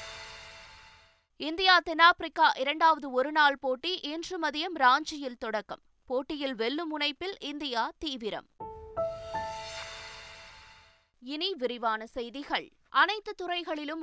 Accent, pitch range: native, 245-315 Hz